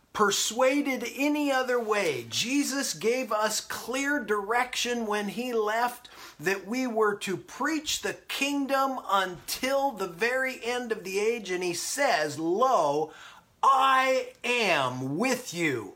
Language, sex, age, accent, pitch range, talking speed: English, male, 30-49, American, 175-260 Hz, 130 wpm